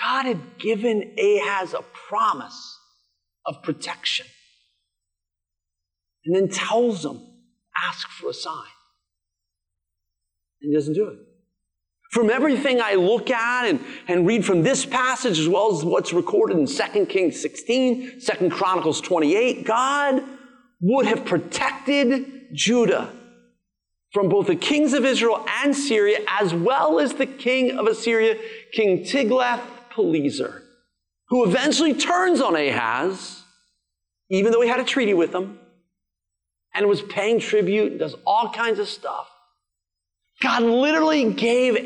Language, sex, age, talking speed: English, male, 40-59, 135 wpm